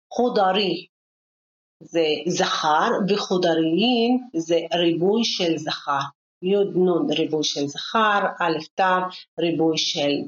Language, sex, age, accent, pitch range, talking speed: Hebrew, female, 40-59, native, 170-230 Hz, 90 wpm